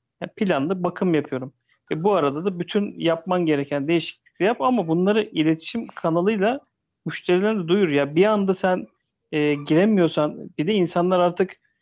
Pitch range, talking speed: 150-185 Hz, 145 wpm